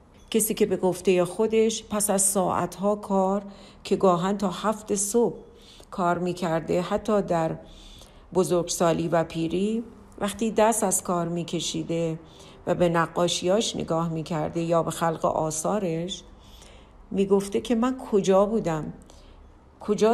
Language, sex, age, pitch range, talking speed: Persian, female, 50-69, 170-210 Hz, 120 wpm